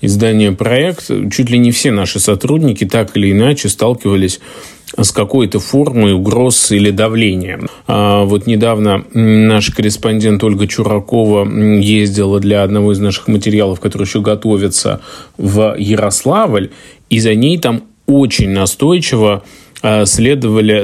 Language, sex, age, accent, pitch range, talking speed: Russian, male, 20-39, native, 100-115 Hz, 120 wpm